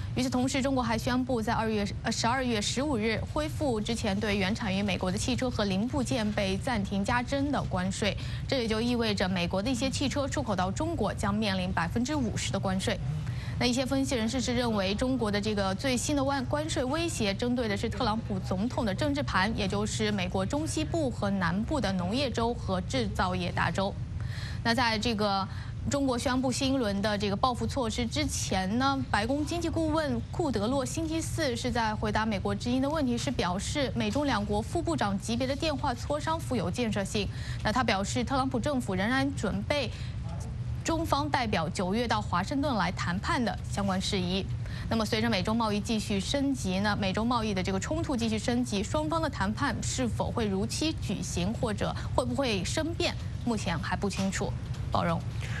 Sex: female